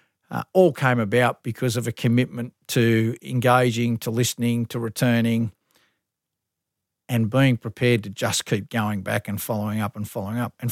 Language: English